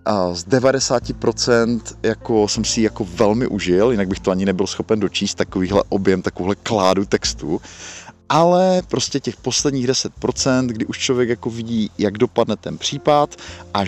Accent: native